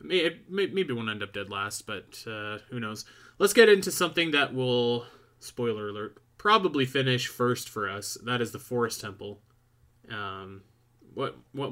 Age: 20-39